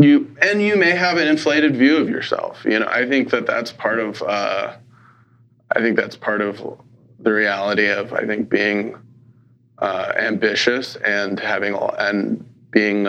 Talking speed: 170 wpm